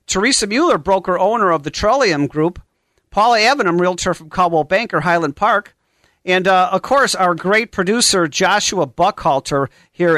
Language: English